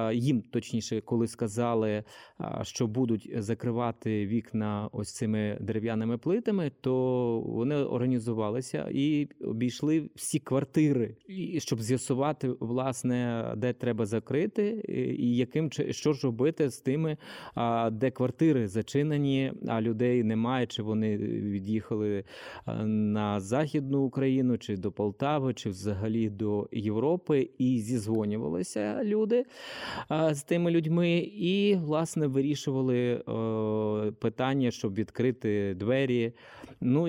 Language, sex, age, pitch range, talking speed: Ukrainian, male, 20-39, 110-140 Hz, 105 wpm